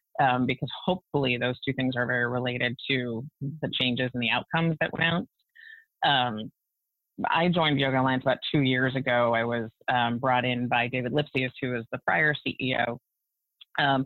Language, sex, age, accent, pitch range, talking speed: English, female, 30-49, American, 130-165 Hz, 175 wpm